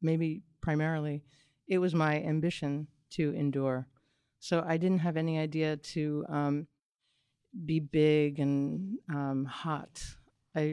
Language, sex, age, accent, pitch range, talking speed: English, female, 40-59, American, 145-165 Hz, 125 wpm